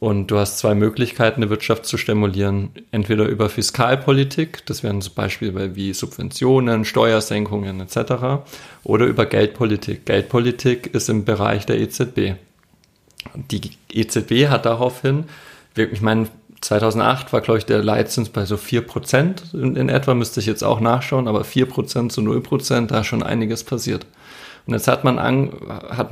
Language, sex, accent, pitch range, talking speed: German, male, German, 110-130 Hz, 155 wpm